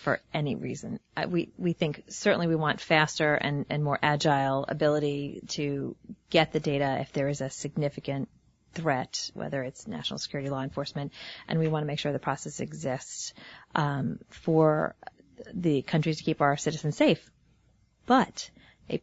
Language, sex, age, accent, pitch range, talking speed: English, female, 30-49, American, 150-185 Hz, 165 wpm